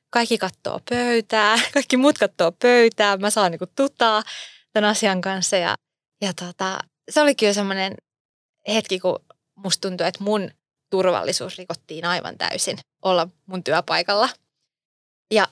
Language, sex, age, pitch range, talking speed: Finnish, female, 20-39, 180-220 Hz, 135 wpm